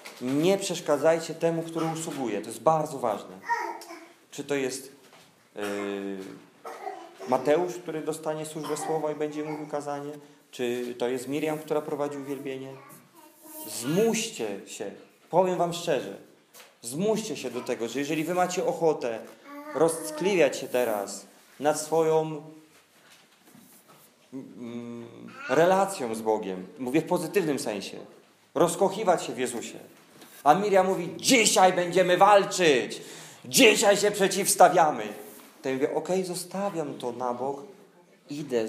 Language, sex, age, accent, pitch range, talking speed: Polish, male, 40-59, native, 135-175 Hz, 120 wpm